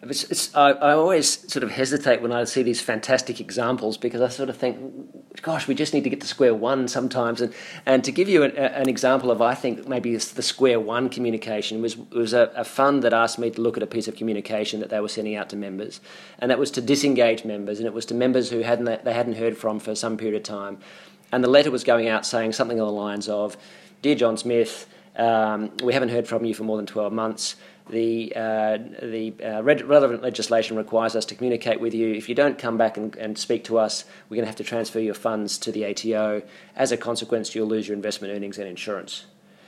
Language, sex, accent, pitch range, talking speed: English, male, Australian, 110-120 Hz, 240 wpm